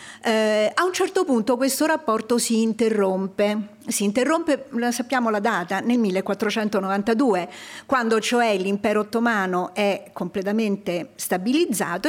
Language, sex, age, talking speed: Italian, female, 50-69, 115 wpm